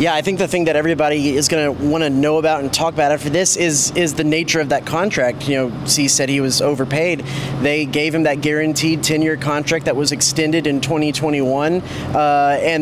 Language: English